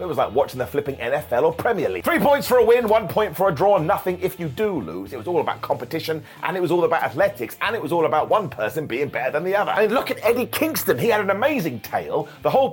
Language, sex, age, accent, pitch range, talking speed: English, male, 30-49, British, 155-225 Hz, 290 wpm